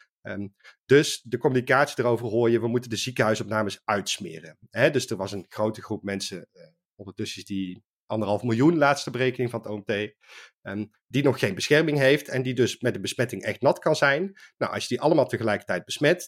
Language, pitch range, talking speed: Dutch, 100-140 Hz, 180 wpm